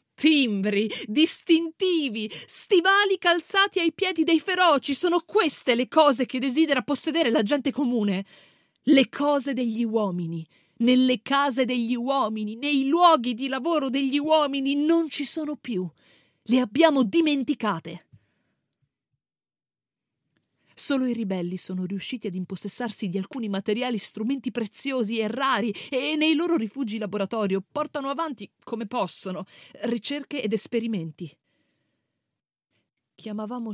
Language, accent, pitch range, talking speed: Italian, native, 205-280 Hz, 115 wpm